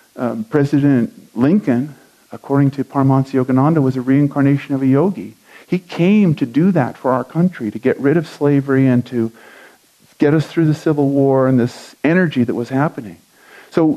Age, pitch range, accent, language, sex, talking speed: 50-69, 130-165 Hz, American, English, male, 175 wpm